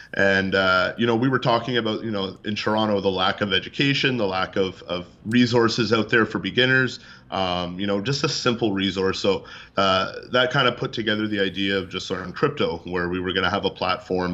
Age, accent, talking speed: 30-49, American, 225 wpm